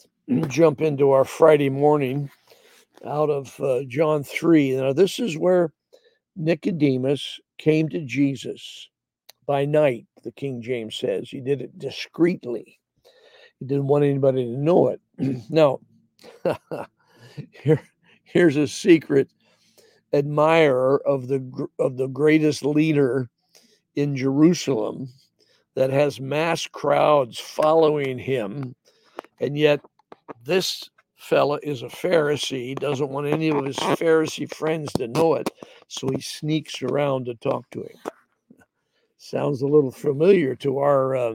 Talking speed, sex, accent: 125 wpm, male, American